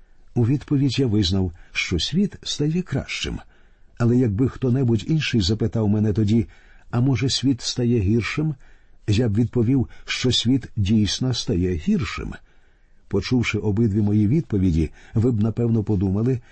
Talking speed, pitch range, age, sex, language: 130 wpm, 100-135 Hz, 50-69, male, Ukrainian